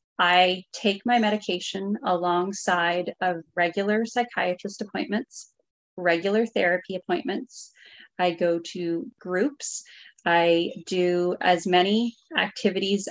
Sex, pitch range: female, 180-225 Hz